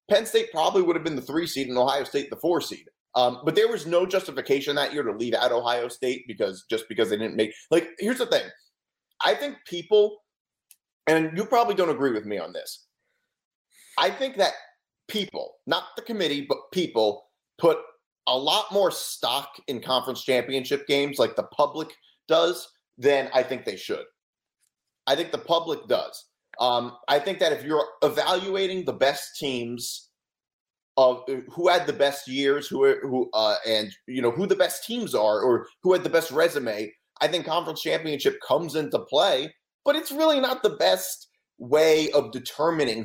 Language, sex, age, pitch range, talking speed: English, male, 30-49, 130-205 Hz, 185 wpm